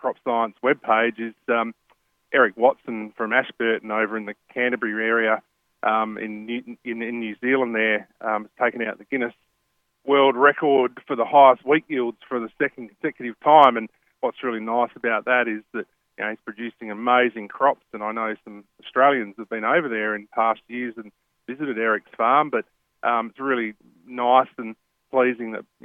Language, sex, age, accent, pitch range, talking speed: English, male, 30-49, Australian, 110-125 Hz, 180 wpm